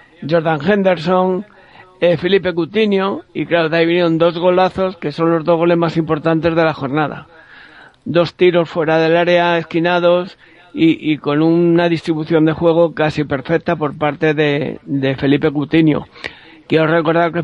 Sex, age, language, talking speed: male, 60-79, Spanish, 160 wpm